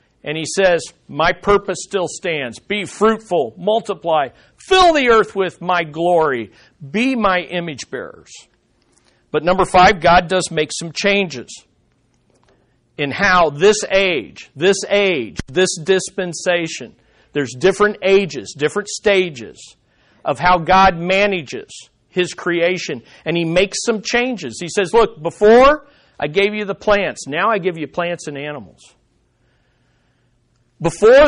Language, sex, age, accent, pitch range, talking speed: English, male, 50-69, American, 150-200 Hz, 130 wpm